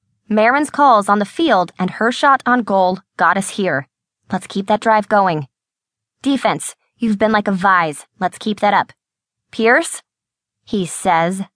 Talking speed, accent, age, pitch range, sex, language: 160 wpm, American, 20-39, 185-245 Hz, female, English